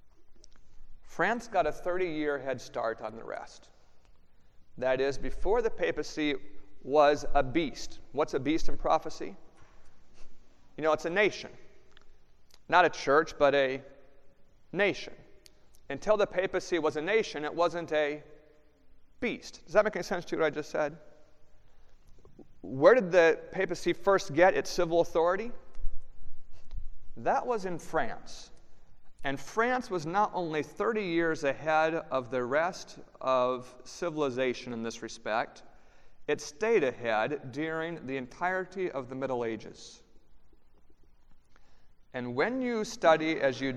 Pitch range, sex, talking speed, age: 125-170 Hz, male, 135 wpm, 40-59